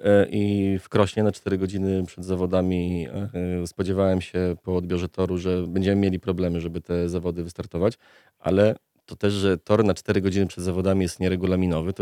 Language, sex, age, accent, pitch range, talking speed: Polish, male, 30-49, native, 90-105 Hz, 170 wpm